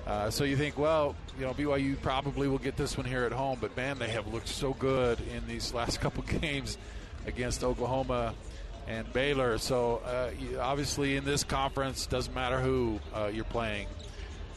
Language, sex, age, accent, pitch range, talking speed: English, male, 50-69, American, 110-135 Hz, 180 wpm